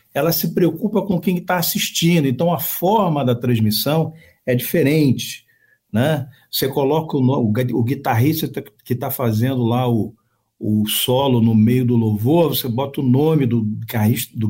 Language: Portuguese